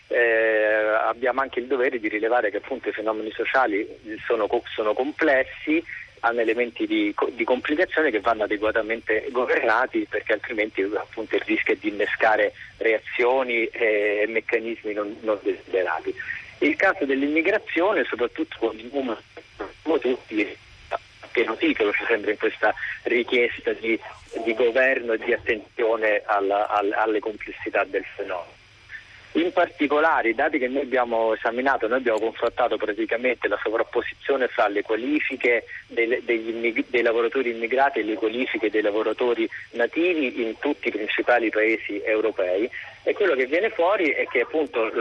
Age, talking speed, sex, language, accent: 40-59, 140 wpm, male, Italian, native